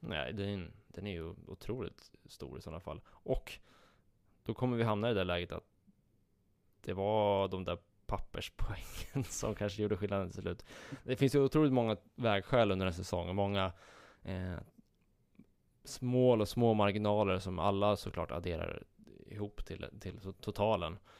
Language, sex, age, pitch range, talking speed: Swedish, male, 20-39, 90-110 Hz, 155 wpm